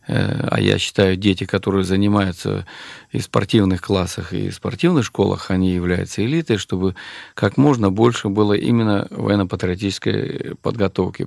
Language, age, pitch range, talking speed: Russian, 40-59, 95-115 Hz, 130 wpm